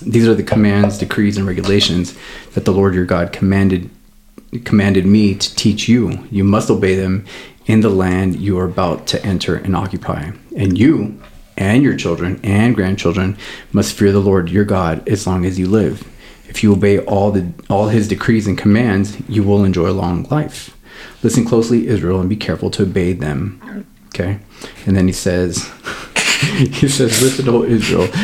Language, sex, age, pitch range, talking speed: English, male, 30-49, 95-105 Hz, 180 wpm